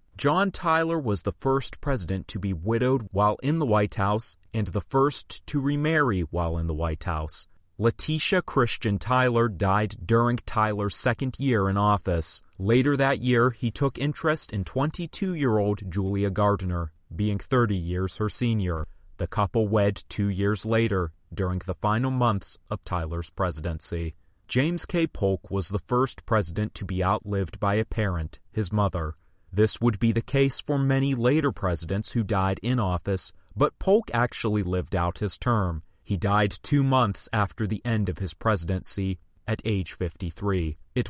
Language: English